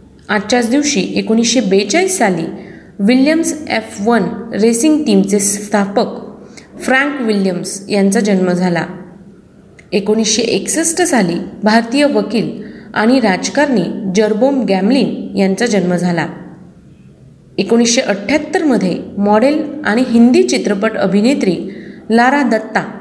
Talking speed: 95 wpm